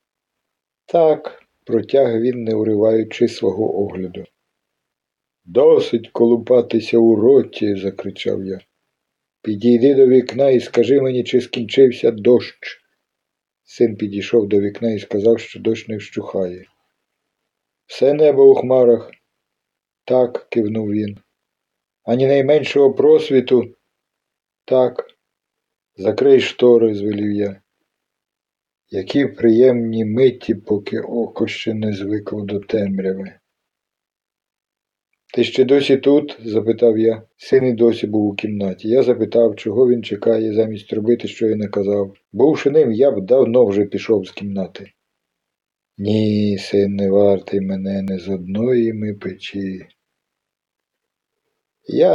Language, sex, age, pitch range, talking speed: Ukrainian, male, 50-69, 105-125 Hz, 115 wpm